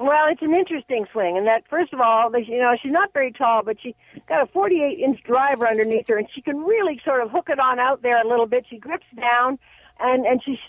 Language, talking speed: English, 275 wpm